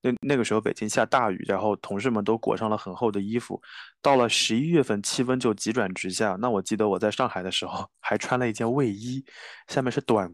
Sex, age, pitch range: male, 20-39, 105-130 Hz